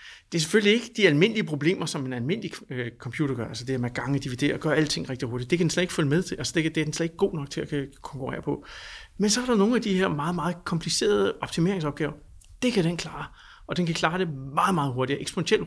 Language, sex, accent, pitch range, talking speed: Danish, male, native, 140-185 Hz, 260 wpm